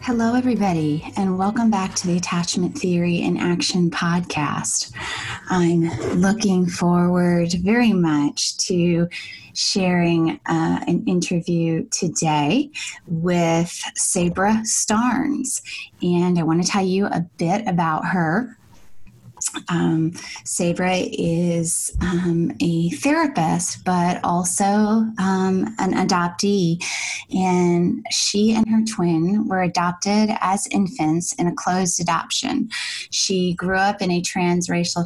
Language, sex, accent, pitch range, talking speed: English, female, American, 170-200 Hz, 115 wpm